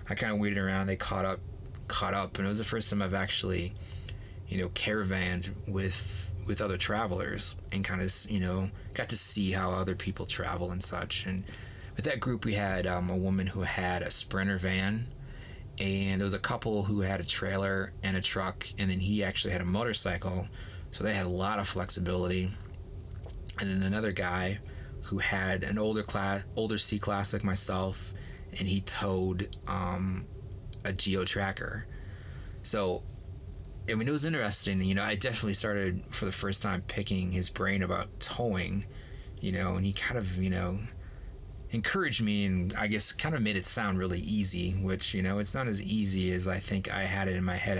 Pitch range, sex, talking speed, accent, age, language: 95-105 Hz, male, 195 wpm, American, 20-39, English